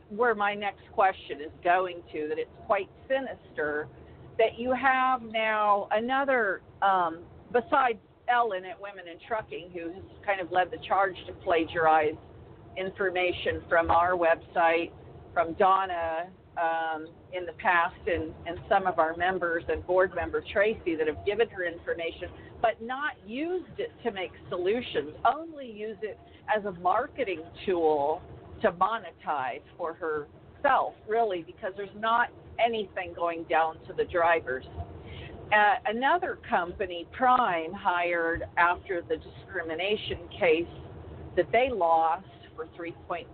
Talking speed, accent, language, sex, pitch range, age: 135 wpm, American, English, female, 165-220 Hz, 50-69